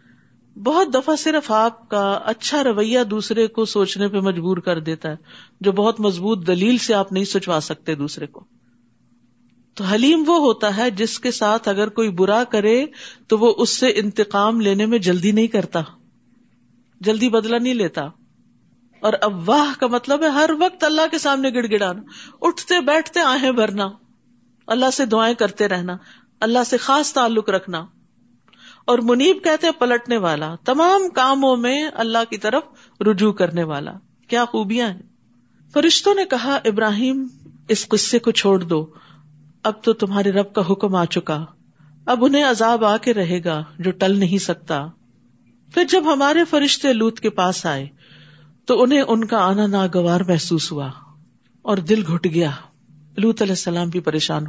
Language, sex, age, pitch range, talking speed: Urdu, female, 50-69, 180-245 Hz, 165 wpm